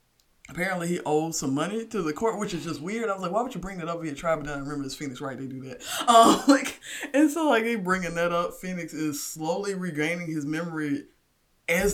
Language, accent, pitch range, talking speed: English, American, 135-160 Hz, 240 wpm